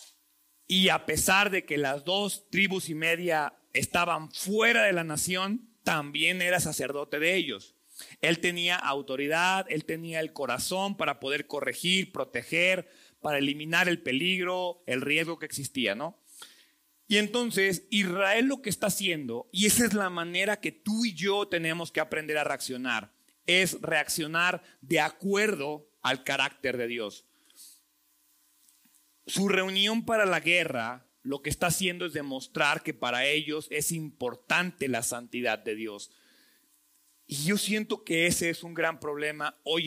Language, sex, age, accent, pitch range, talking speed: Spanish, male, 40-59, Mexican, 135-185 Hz, 150 wpm